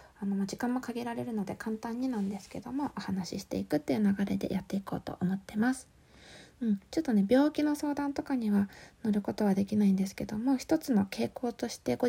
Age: 20-39